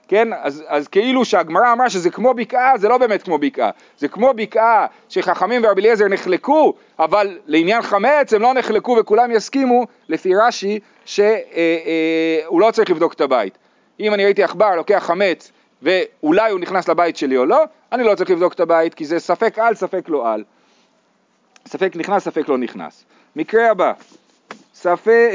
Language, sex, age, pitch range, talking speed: Hebrew, male, 40-59, 160-230 Hz, 175 wpm